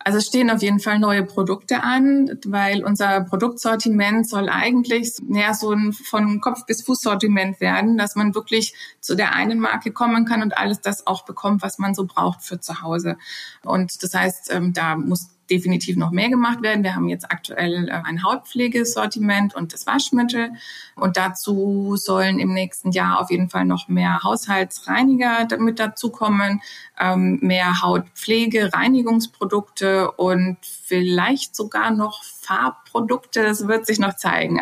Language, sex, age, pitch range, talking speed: German, female, 20-39, 185-230 Hz, 155 wpm